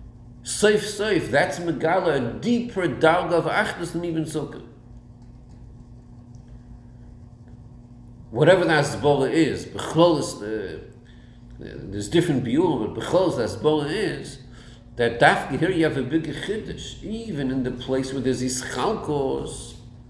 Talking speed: 120 wpm